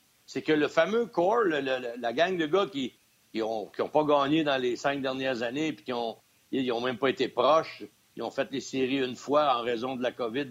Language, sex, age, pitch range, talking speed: French, male, 60-79, 135-190 Hz, 245 wpm